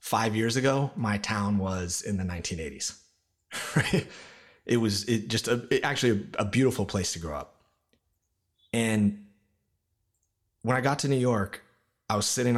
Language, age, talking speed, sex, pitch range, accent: English, 30-49, 155 wpm, male, 95-120 Hz, American